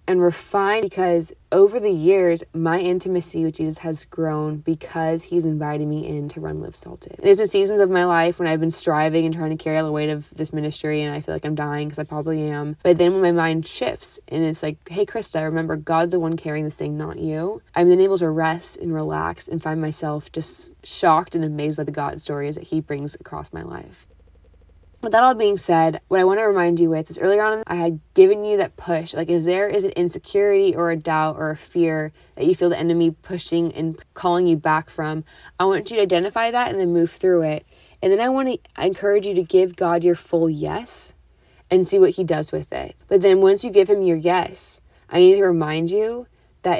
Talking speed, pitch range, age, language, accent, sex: 235 wpm, 155-185 Hz, 20-39, English, American, female